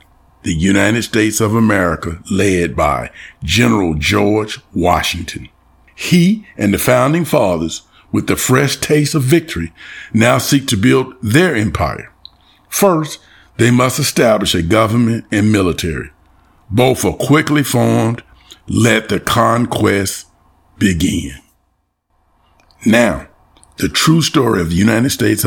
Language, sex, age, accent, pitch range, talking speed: English, male, 50-69, American, 85-130 Hz, 120 wpm